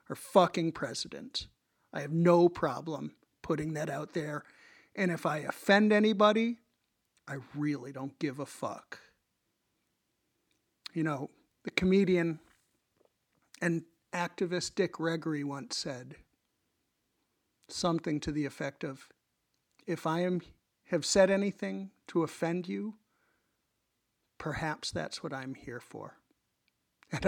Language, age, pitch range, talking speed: English, 50-69, 145-190 Hz, 115 wpm